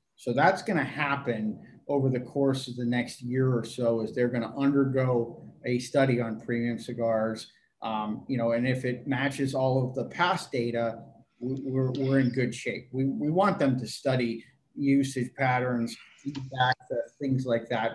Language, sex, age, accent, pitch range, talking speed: English, male, 30-49, American, 120-140 Hz, 175 wpm